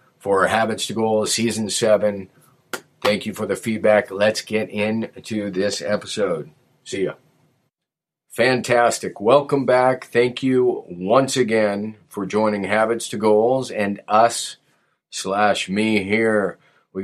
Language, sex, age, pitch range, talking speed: English, male, 40-59, 105-115 Hz, 125 wpm